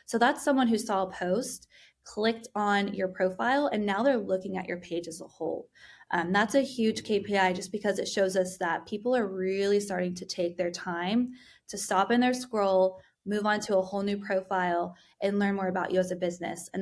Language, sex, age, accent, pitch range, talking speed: English, female, 20-39, American, 185-215 Hz, 220 wpm